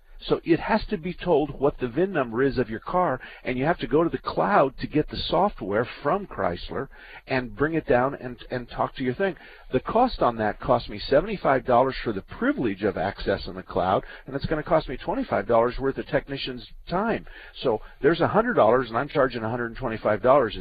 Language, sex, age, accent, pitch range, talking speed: English, male, 50-69, American, 105-140 Hz, 205 wpm